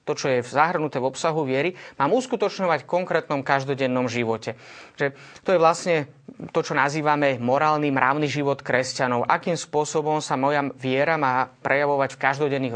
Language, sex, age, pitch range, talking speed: Slovak, male, 30-49, 135-165 Hz, 155 wpm